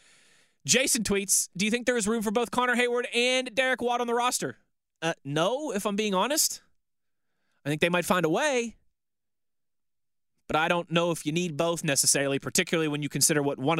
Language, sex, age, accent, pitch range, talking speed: English, male, 20-39, American, 145-210 Hz, 200 wpm